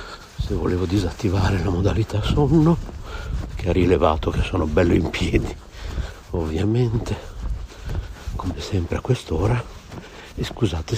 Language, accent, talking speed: Italian, native, 115 wpm